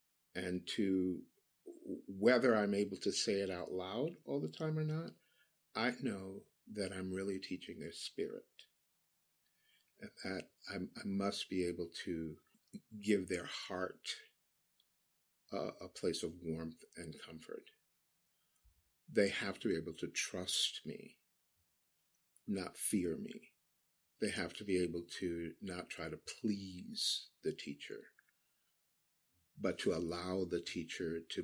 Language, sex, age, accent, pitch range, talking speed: English, male, 50-69, American, 85-135 Hz, 135 wpm